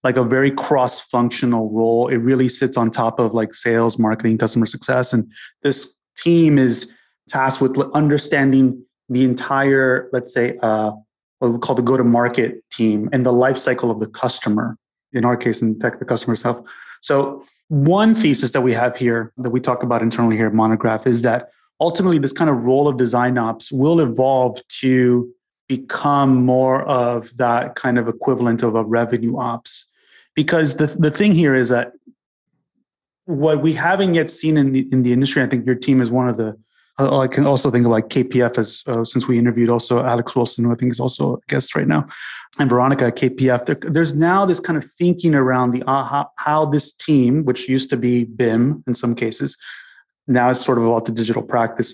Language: English